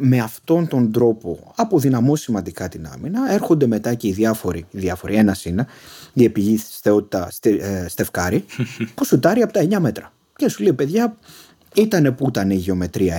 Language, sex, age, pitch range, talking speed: Greek, male, 30-49, 105-165 Hz, 170 wpm